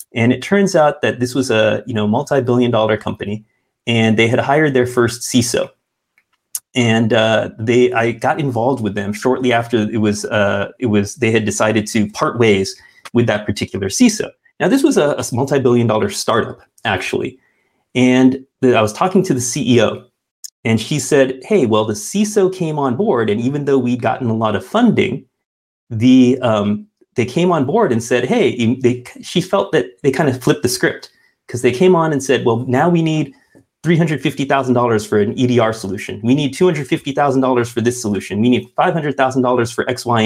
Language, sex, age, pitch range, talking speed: English, male, 30-49, 115-140 Hz, 185 wpm